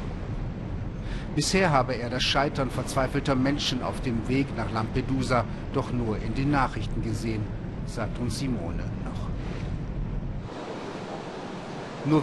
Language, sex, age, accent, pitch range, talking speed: German, male, 50-69, German, 120-145 Hz, 115 wpm